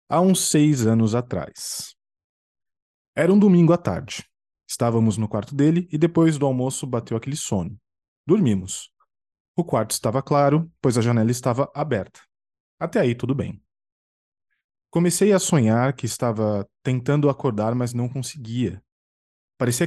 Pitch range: 110-155 Hz